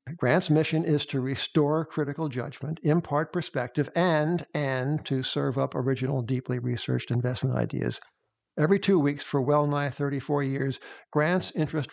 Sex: male